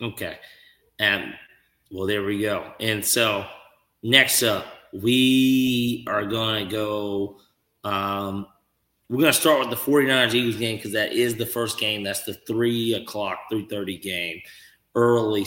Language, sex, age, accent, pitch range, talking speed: English, male, 30-49, American, 105-120 Hz, 140 wpm